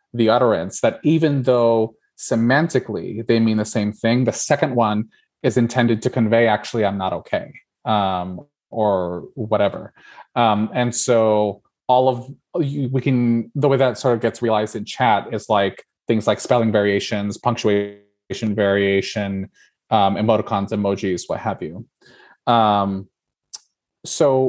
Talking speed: 140 wpm